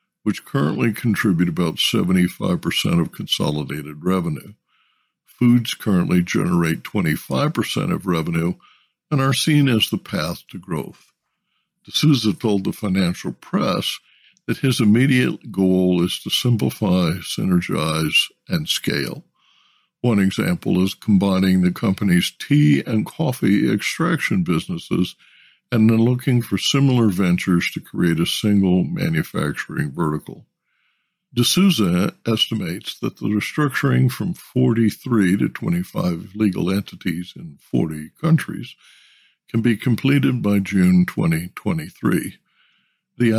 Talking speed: 110 wpm